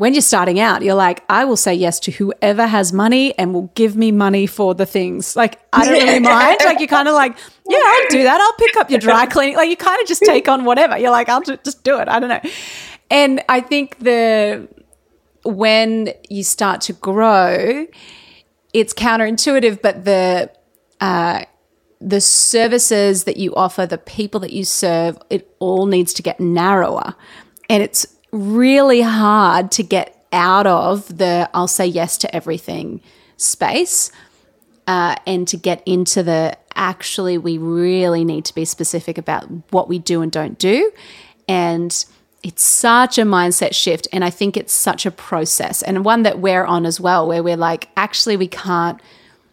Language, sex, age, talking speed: English, female, 30-49, 180 wpm